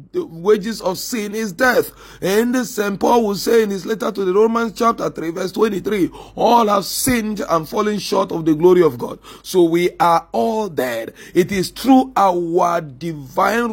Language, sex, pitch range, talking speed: English, male, 175-230 Hz, 190 wpm